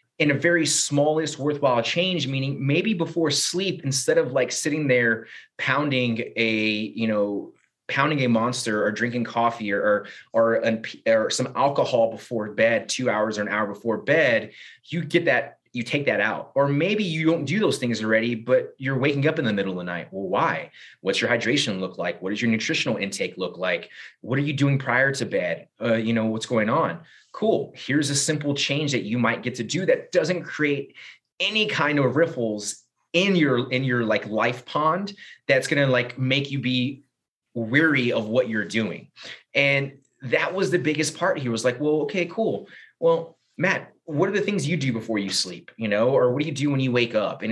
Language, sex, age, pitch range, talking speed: English, male, 30-49, 115-155 Hz, 205 wpm